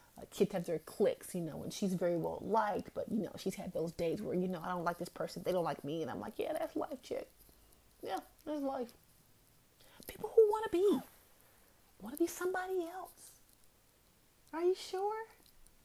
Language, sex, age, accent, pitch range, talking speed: English, female, 30-49, American, 195-285 Hz, 205 wpm